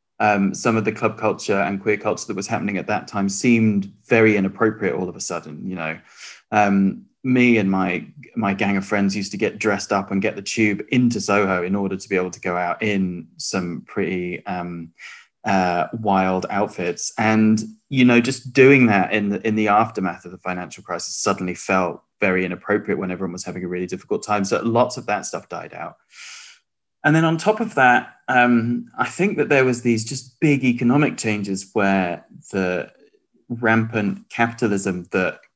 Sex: male